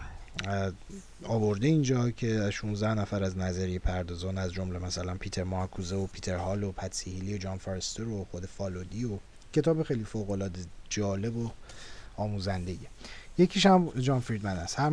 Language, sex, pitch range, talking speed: Persian, male, 95-140 Hz, 150 wpm